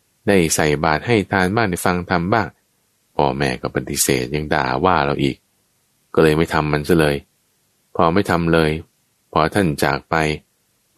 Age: 20-39